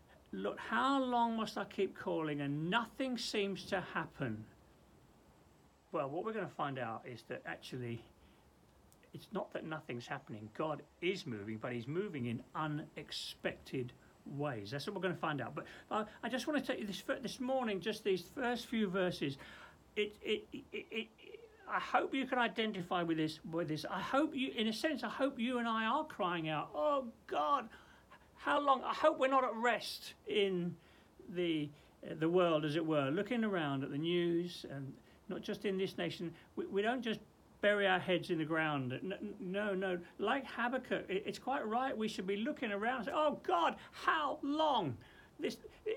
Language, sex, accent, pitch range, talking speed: English, male, British, 170-245 Hz, 190 wpm